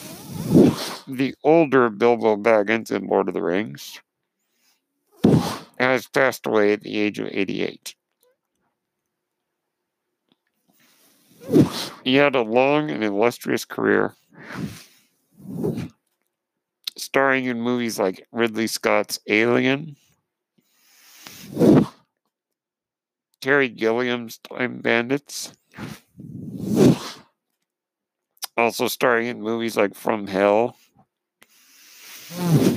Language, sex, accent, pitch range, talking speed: English, male, American, 105-135 Hz, 75 wpm